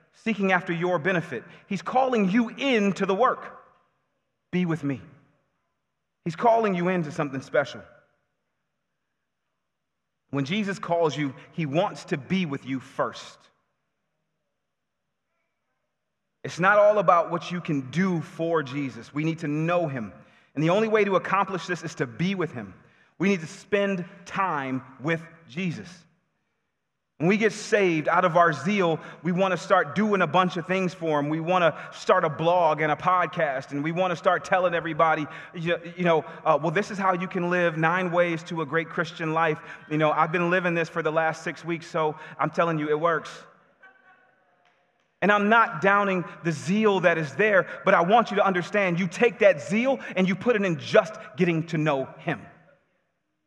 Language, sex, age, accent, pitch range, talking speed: English, male, 30-49, American, 160-195 Hz, 185 wpm